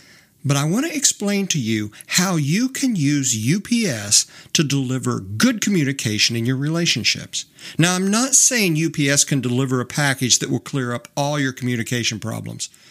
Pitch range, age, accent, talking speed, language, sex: 125-170 Hz, 50-69, American, 165 wpm, English, male